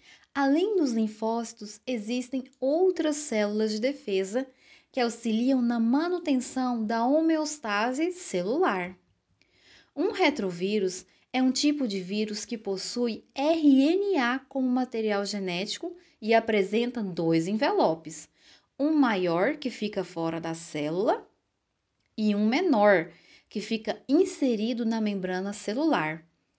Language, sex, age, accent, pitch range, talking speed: Portuguese, female, 20-39, Brazilian, 205-280 Hz, 110 wpm